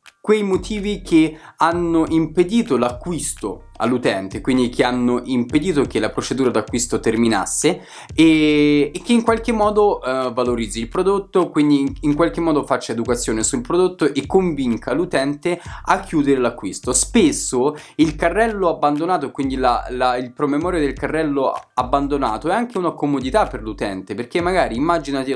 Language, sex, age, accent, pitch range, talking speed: Italian, male, 20-39, native, 130-175 Hz, 140 wpm